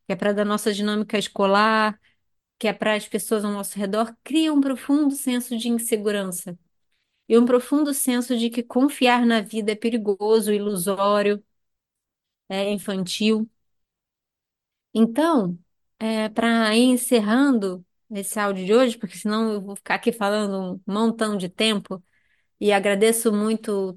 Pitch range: 200-235 Hz